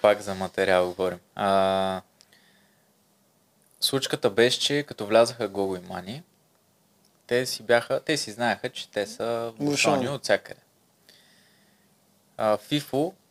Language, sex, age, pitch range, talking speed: Bulgarian, male, 20-39, 100-145 Hz, 120 wpm